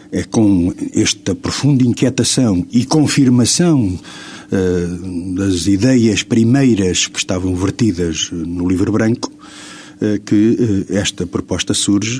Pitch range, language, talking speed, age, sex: 90-115 Hz, Portuguese, 115 wpm, 50-69, male